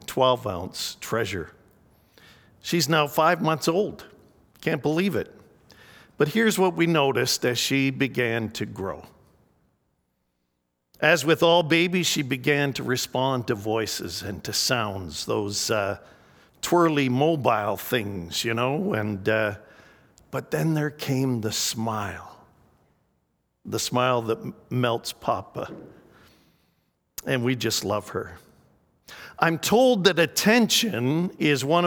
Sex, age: male, 50-69